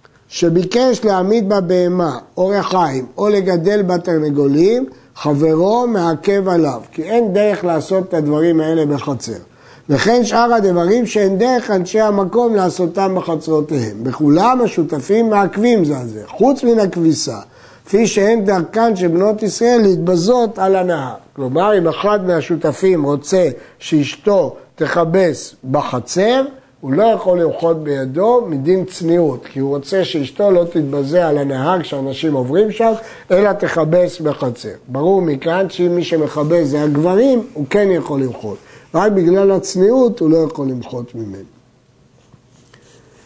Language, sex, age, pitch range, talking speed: Hebrew, male, 50-69, 145-200 Hz, 130 wpm